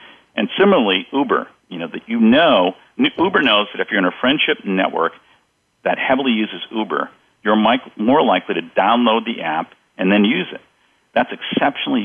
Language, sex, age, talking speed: English, male, 50-69, 170 wpm